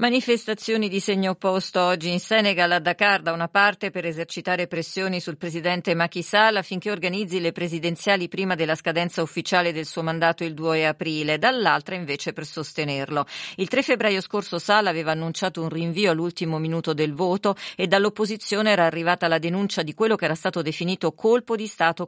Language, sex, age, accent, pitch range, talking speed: Italian, female, 40-59, native, 160-200 Hz, 175 wpm